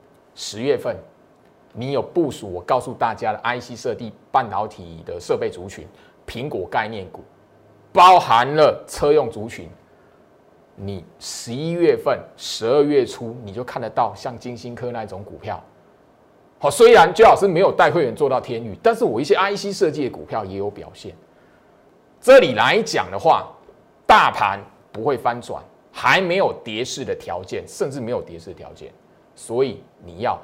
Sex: male